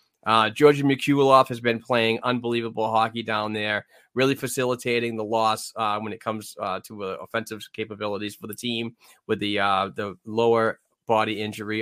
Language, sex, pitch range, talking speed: English, male, 105-125 Hz, 170 wpm